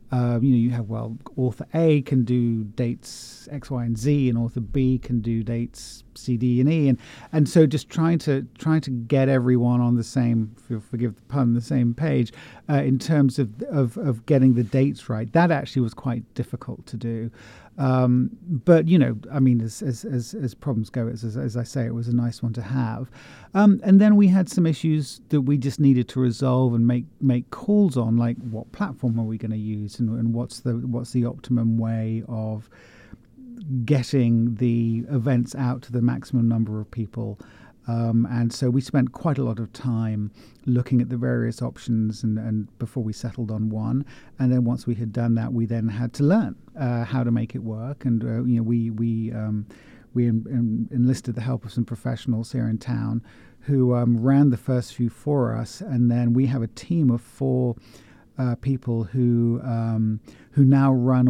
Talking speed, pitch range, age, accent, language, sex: 205 wpm, 115-135 Hz, 40-59, British, English, male